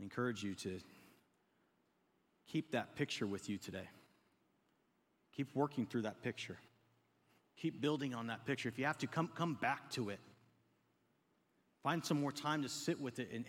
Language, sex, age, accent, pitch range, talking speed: English, male, 30-49, American, 130-175 Hz, 165 wpm